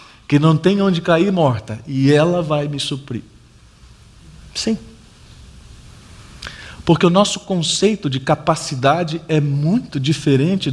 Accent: Brazilian